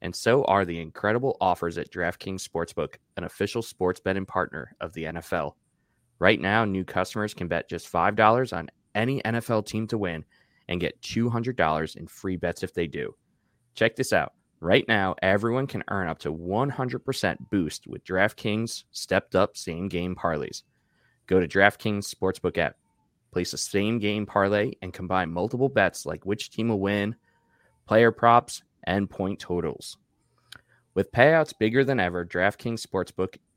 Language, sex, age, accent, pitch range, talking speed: English, male, 20-39, American, 90-115 Hz, 155 wpm